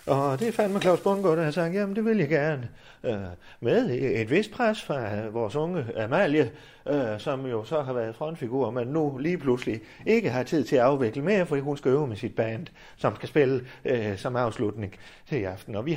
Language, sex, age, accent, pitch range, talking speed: Danish, male, 30-49, native, 115-155 Hz, 220 wpm